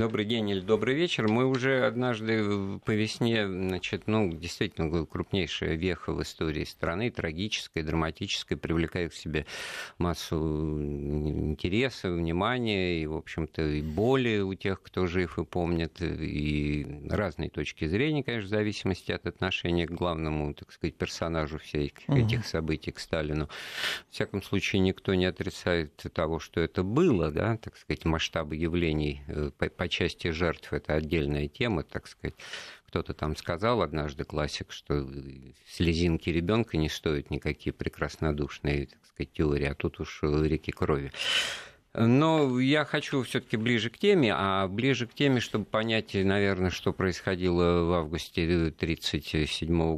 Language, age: Russian, 50-69